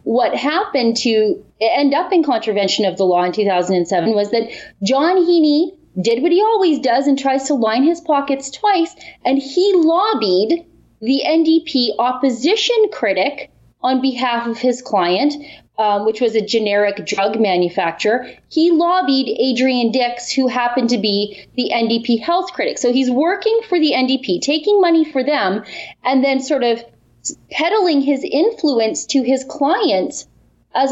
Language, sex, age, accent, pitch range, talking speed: English, female, 30-49, American, 225-310 Hz, 155 wpm